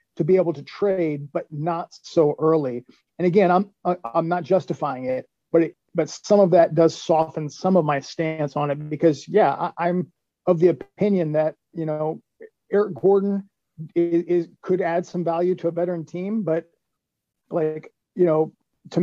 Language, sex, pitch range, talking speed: English, male, 155-190 Hz, 180 wpm